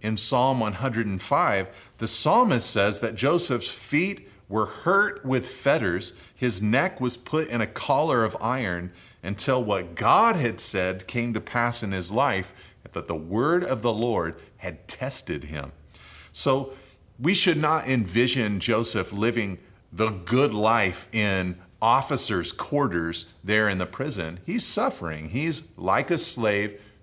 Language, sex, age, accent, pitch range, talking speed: English, male, 40-59, American, 90-120 Hz, 145 wpm